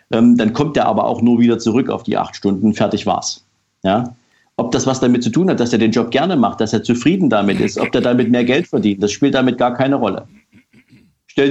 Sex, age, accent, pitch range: male, 50-69, German, 110-140 Hz